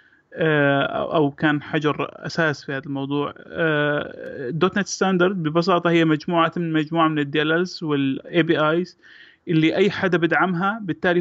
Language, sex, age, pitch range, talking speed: Arabic, male, 30-49, 155-185 Hz, 150 wpm